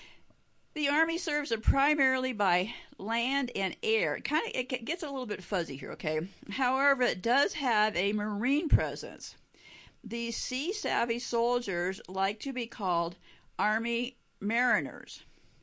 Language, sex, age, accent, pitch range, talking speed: English, female, 50-69, American, 195-245 Hz, 125 wpm